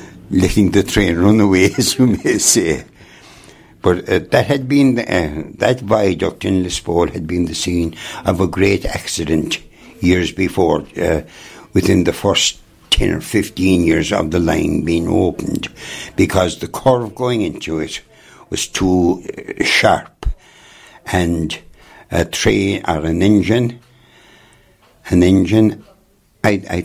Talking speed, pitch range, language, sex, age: 135 wpm, 85-110 Hz, English, male, 60-79